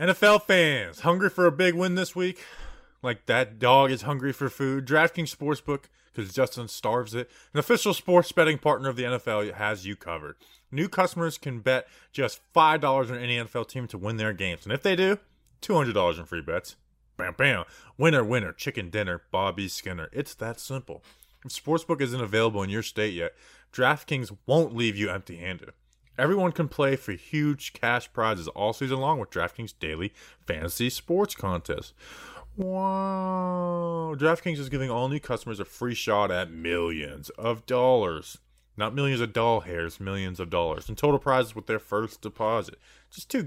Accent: American